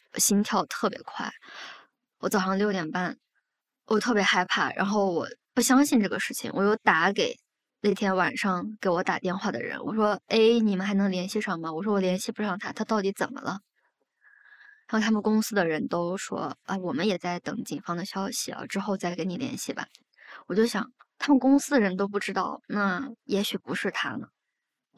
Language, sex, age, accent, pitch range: Chinese, male, 20-39, native, 190-240 Hz